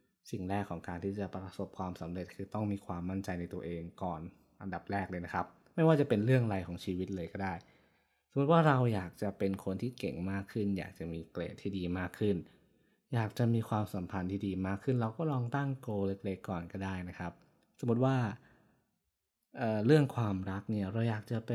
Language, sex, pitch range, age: Thai, male, 90-115 Hz, 20-39